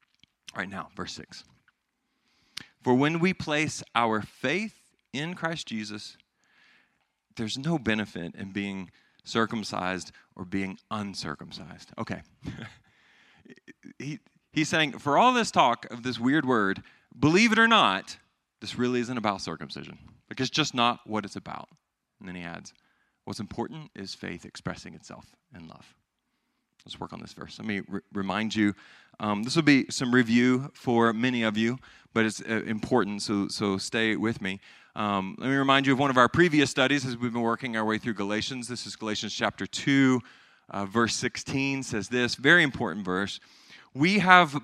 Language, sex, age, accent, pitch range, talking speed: English, male, 40-59, American, 105-145 Hz, 170 wpm